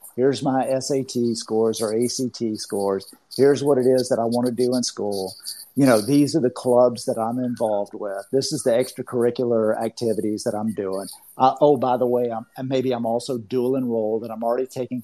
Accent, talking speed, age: American, 200 wpm, 50-69